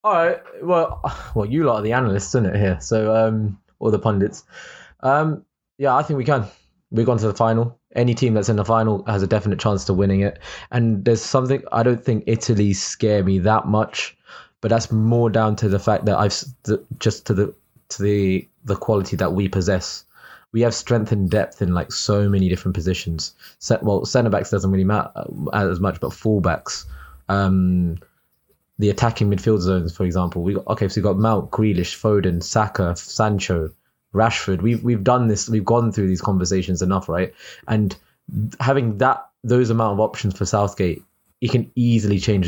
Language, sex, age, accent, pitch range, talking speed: English, male, 20-39, British, 95-110 Hz, 190 wpm